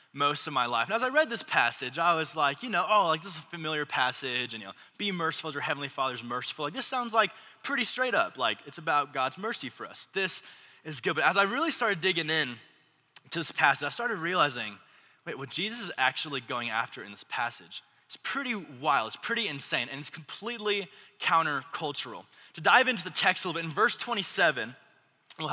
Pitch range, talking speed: 140-200 Hz, 220 wpm